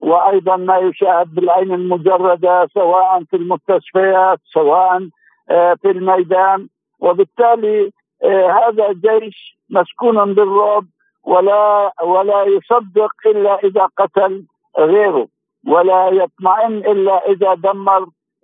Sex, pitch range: male, 180-210 Hz